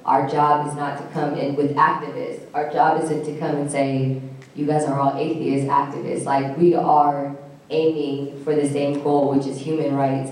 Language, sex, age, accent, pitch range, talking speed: English, female, 10-29, American, 140-170 Hz, 200 wpm